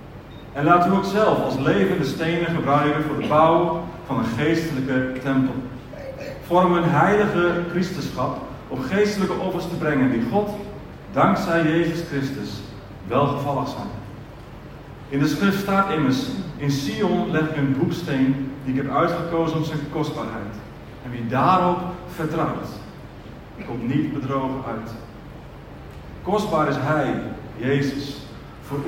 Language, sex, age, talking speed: Dutch, male, 40-59, 135 wpm